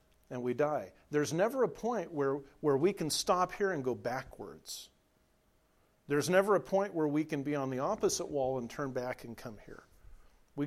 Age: 50-69